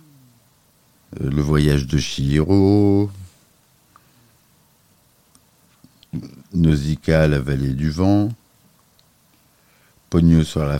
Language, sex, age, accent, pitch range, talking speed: French, male, 50-69, French, 70-100 Hz, 70 wpm